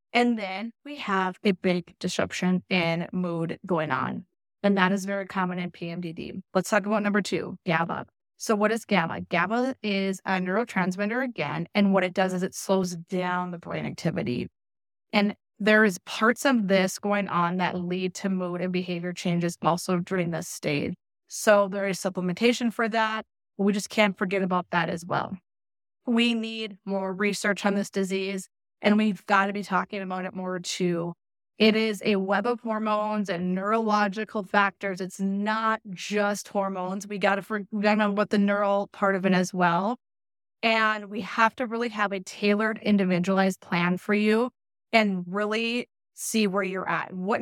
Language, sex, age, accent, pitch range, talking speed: English, female, 20-39, American, 180-215 Hz, 175 wpm